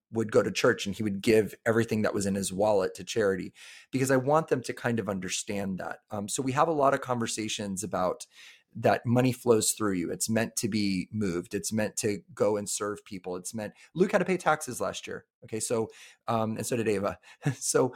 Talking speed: 225 wpm